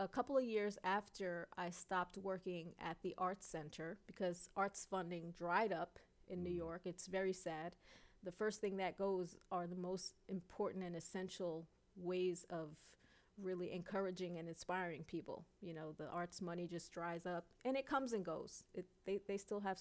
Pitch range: 175-200 Hz